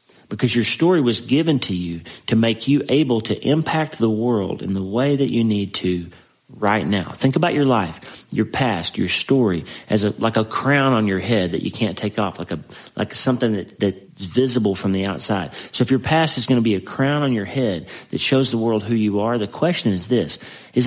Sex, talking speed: male, 230 wpm